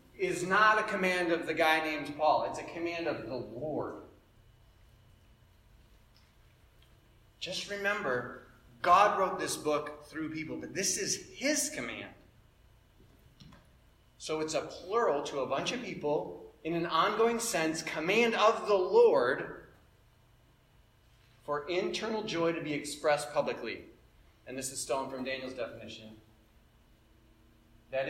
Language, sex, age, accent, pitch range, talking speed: English, male, 30-49, American, 115-165 Hz, 130 wpm